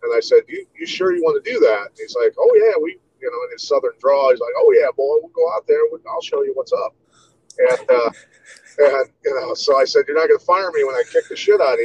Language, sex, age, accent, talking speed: English, male, 30-49, American, 310 wpm